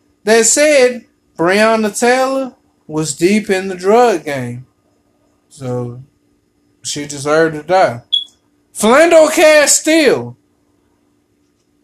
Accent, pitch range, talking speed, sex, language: American, 185-280 Hz, 85 wpm, male, English